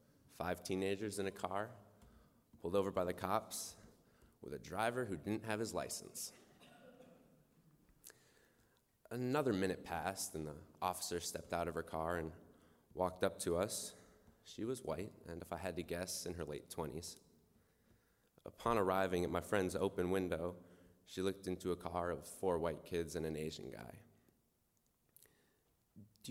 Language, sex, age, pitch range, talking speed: English, male, 20-39, 85-105 Hz, 155 wpm